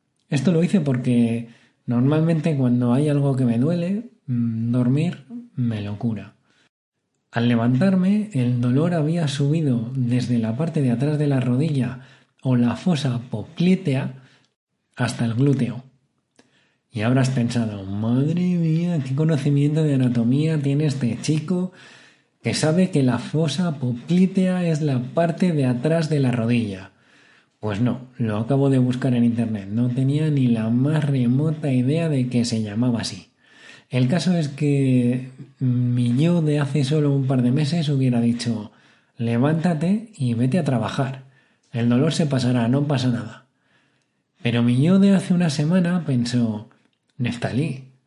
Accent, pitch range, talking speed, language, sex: Spanish, 120-155 Hz, 145 wpm, Spanish, male